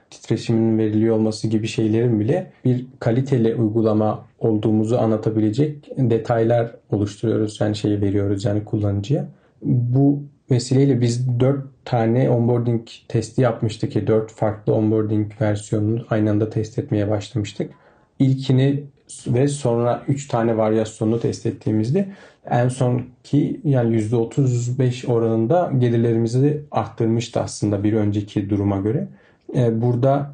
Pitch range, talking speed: 110-135 Hz, 115 wpm